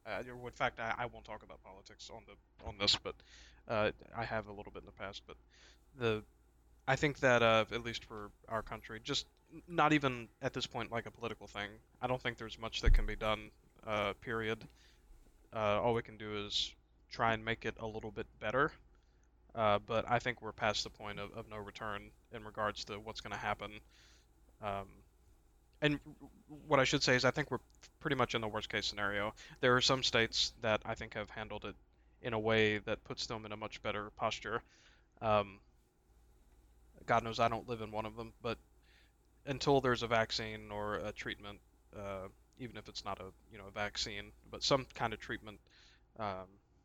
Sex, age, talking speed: male, 20-39, 200 wpm